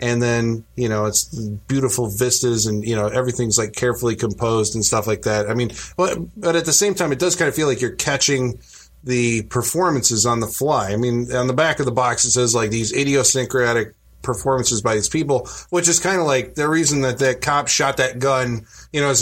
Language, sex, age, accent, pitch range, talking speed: English, male, 20-39, American, 115-150 Hz, 220 wpm